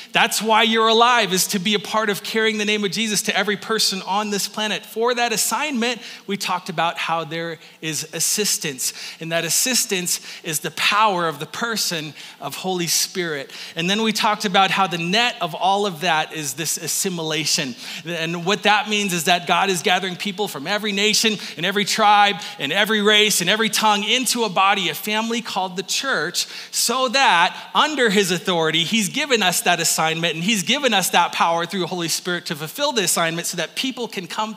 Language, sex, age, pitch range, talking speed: English, male, 30-49, 175-220 Hz, 205 wpm